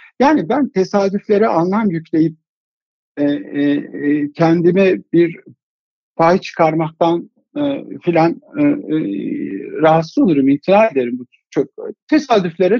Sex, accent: male, native